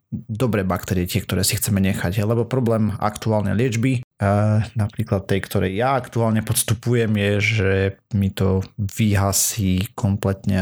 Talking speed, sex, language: 130 wpm, male, Slovak